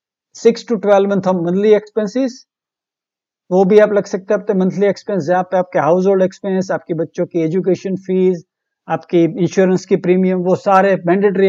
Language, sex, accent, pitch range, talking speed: English, male, Indian, 175-215 Hz, 125 wpm